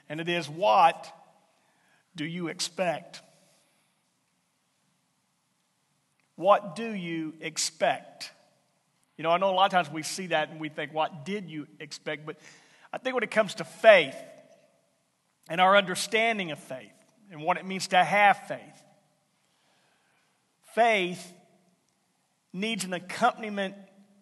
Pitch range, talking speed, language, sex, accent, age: 170-210 Hz, 130 wpm, English, male, American, 50-69